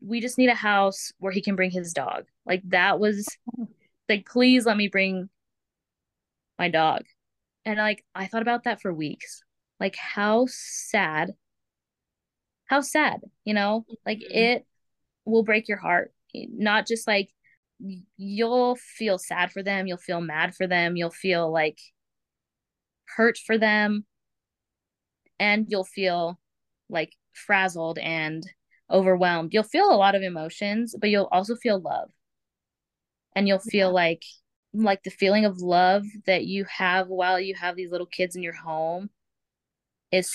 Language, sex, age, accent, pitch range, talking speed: English, female, 20-39, American, 180-215 Hz, 150 wpm